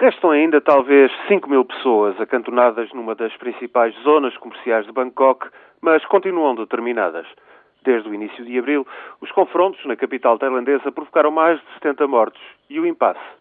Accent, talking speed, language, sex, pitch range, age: Portuguese, 155 wpm, Portuguese, male, 120-175 Hz, 40-59